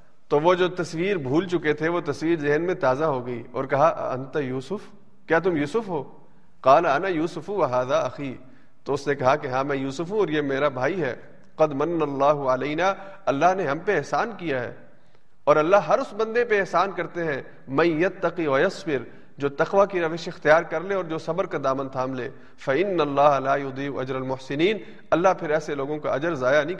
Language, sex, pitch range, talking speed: Urdu, male, 135-170 Hz, 200 wpm